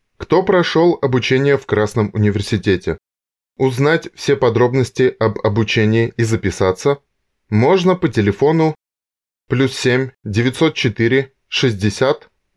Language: Russian